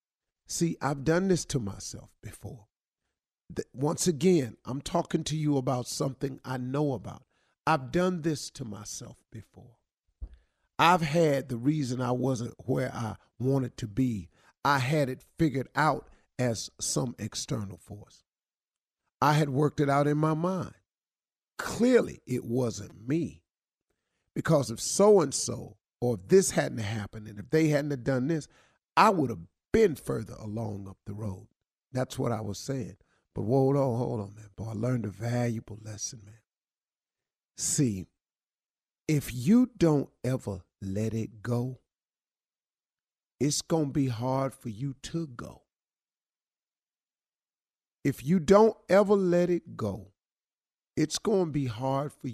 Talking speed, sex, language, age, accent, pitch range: 145 wpm, male, English, 50-69, American, 110-150 Hz